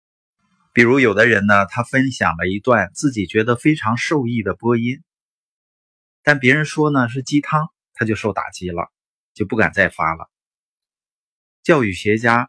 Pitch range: 95-140 Hz